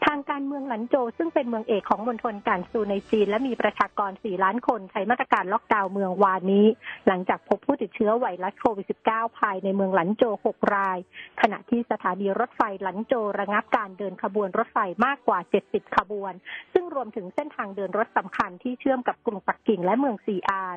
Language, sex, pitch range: Thai, female, 200-245 Hz